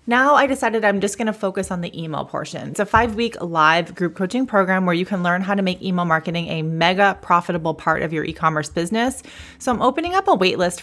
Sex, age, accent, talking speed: female, 30-49, American, 240 wpm